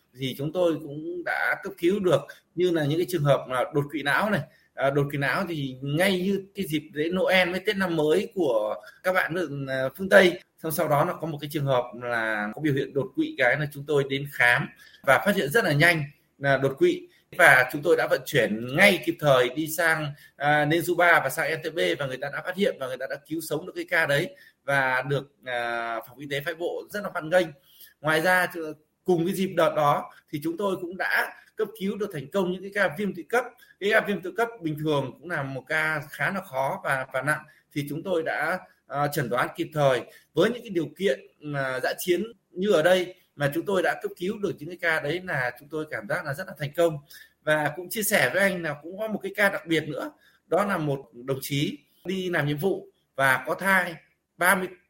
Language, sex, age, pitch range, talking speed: Vietnamese, male, 20-39, 145-190 Hz, 245 wpm